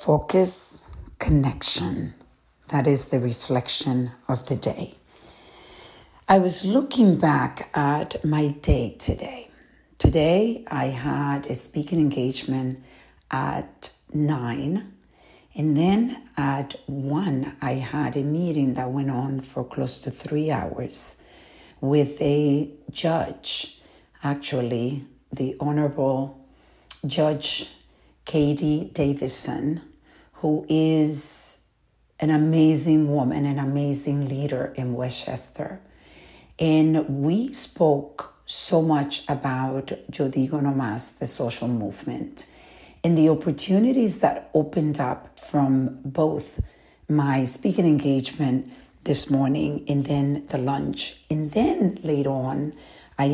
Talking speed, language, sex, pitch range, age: 105 wpm, English, female, 135-155 Hz, 60-79